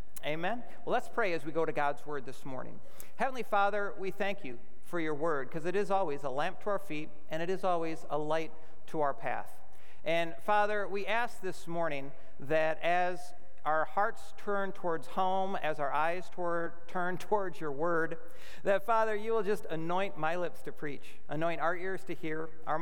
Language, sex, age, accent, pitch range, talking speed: English, male, 50-69, American, 155-195 Hz, 195 wpm